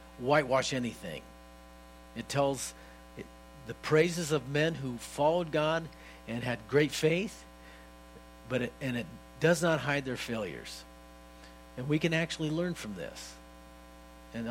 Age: 50-69